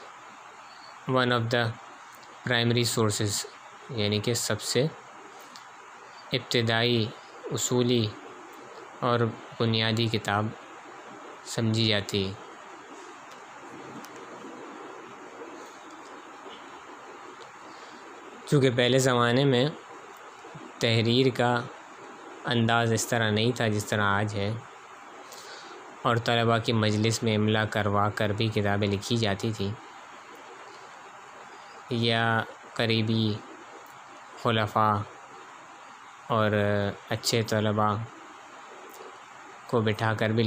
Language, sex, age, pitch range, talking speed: Urdu, male, 20-39, 105-120 Hz, 80 wpm